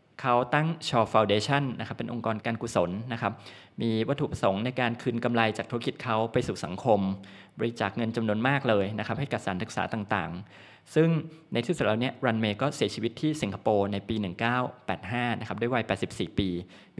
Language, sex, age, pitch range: Thai, male, 20-39, 105-135 Hz